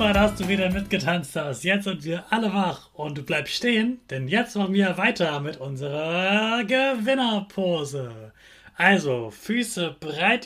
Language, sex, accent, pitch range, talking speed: German, male, German, 170-230 Hz, 150 wpm